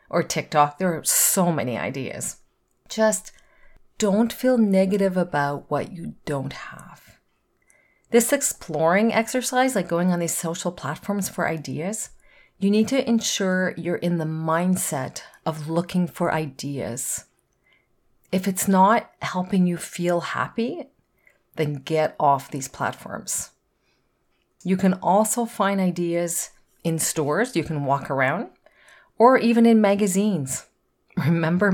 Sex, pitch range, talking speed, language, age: female, 160-205 Hz, 125 wpm, English, 40-59